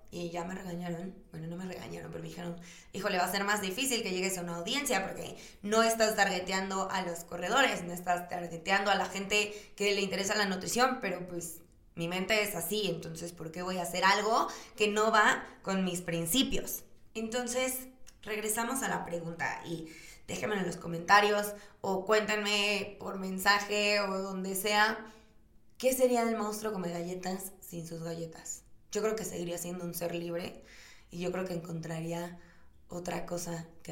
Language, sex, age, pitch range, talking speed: Spanish, female, 20-39, 175-205 Hz, 180 wpm